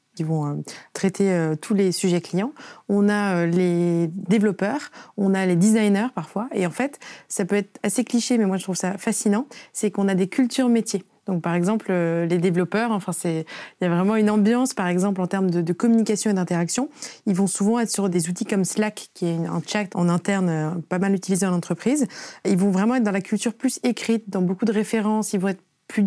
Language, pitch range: French, 185-230 Hz